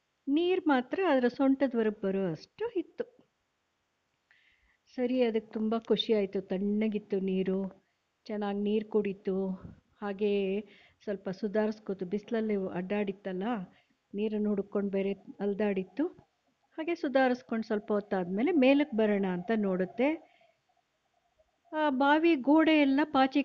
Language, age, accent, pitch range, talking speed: Kannada, 60-79, native, 205-295 Hz, 95 wpm